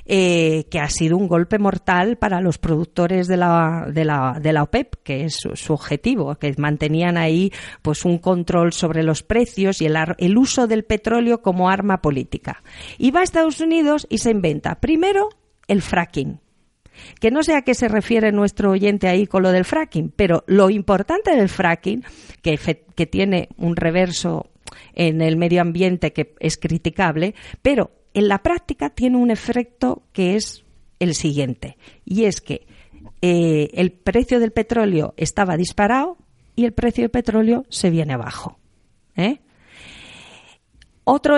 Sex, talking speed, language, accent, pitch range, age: female, 165 wpm, Spanish, Spanish, 170-240 Hz, 50-69